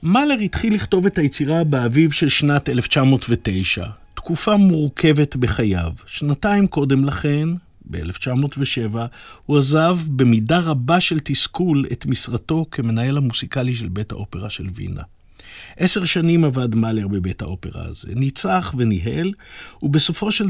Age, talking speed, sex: 50-69, 125 wpm, male